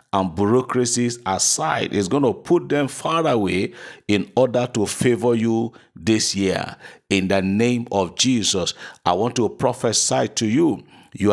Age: 50-69